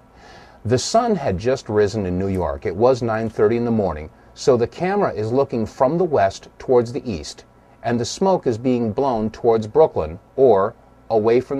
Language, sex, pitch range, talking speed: Malay, male, 120-175 Hz, 185 wpm